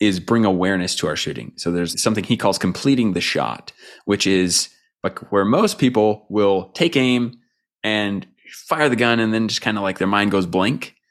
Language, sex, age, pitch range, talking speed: English, male, 20-39, 95-125 Hz, 195 wpm